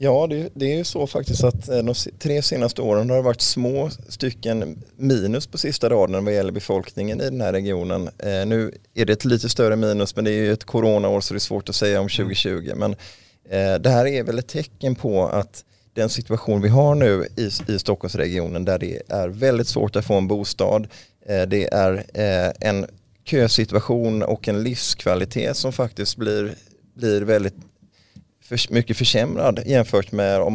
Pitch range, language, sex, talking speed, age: 100-120 Hz, Swedish, male, 180 wpm, 20-39